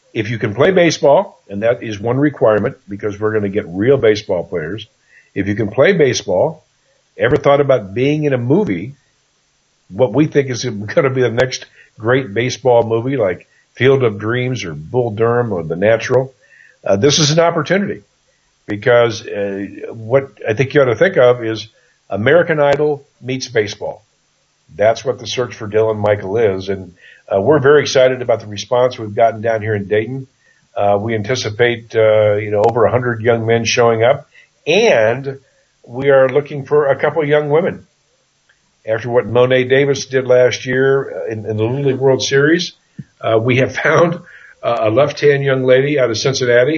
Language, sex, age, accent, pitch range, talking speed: English, male, 50-69, American, 110-135 Hz, 180 wpm